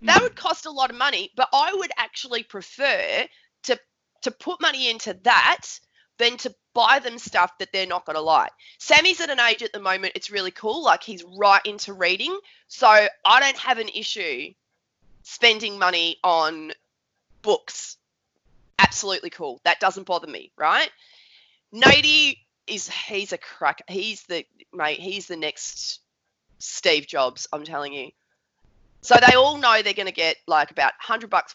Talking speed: 170 wpm